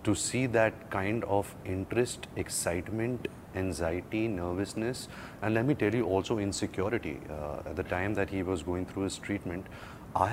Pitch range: 90-110 Hz